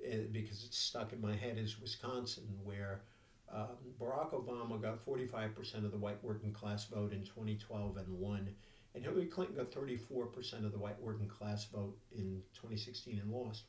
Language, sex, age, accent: English, male, 50-69, American